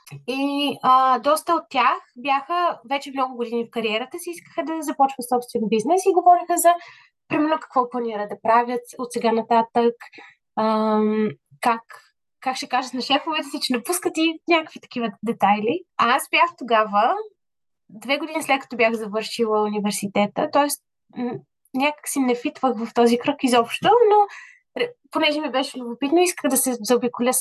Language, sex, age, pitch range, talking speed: Bulgarian, female, 20-39, 230-290 Hz, 155 wpm